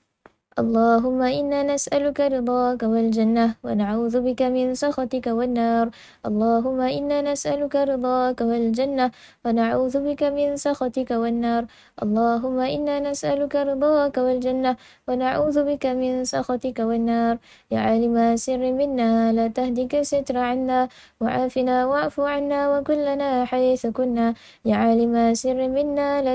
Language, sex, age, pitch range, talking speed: Malay, female, 10-29, 235-285 Hz, 105 wpm